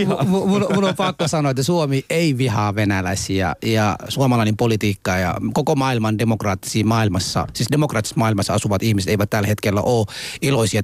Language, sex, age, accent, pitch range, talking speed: Finnish, male, 30-49, native, 105-135 Hz, 155 wpm